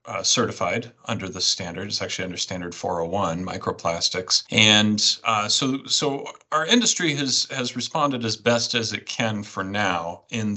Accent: American